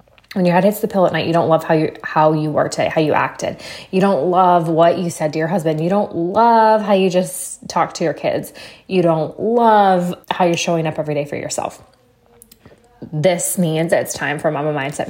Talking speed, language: 230 wpm, English